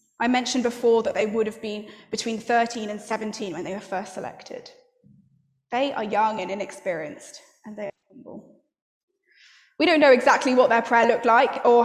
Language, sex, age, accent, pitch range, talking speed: English, female, 10-29, British, 205-255 Hz, 180 wpm